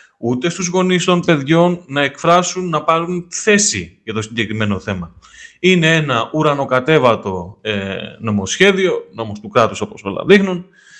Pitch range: 120-180 Hz